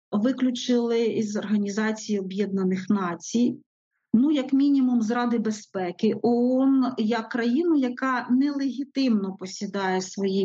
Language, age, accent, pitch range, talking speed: Ukrainian, 40-59, native, 215-260 Hz, 105 wpm